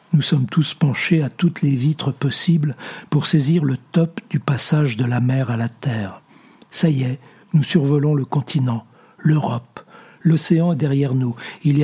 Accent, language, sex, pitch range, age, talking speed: French, French, male, 135-170 Hz, 60-79, 175 wpm